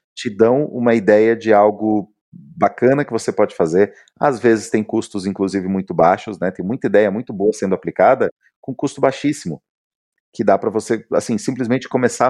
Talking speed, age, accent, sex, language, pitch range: 175 wpm, 40-59, Brazilian, male, Portuguese, 105-145 Hz